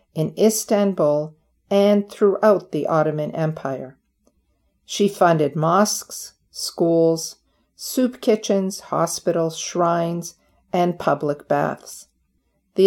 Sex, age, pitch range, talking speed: female, 50-69, 155-200 Hz, 90 wpm